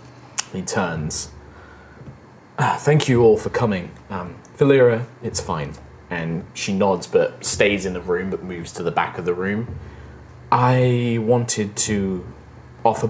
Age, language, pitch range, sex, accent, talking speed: 30-49, English, 95-120 Hz, male, British, 145 wpm